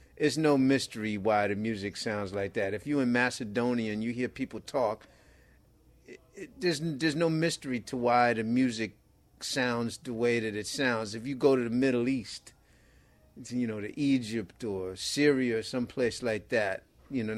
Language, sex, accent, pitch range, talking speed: English, male, American, 110-135 Hz, 180 wpm